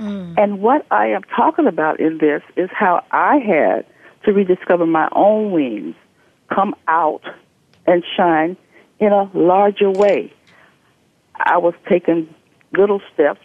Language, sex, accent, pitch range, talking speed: English, female, American, 165-230 Hz, 135 wpm